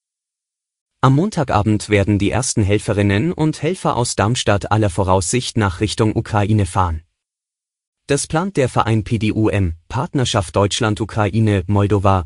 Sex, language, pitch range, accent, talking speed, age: male, German, 100-130 Hz, German, 115 wpm, 30-49